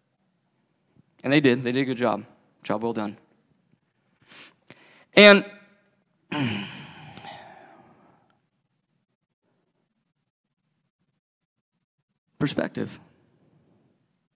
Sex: male